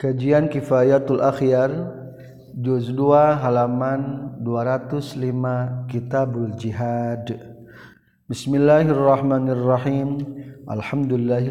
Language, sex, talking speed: Indonesian, male, 55 wpm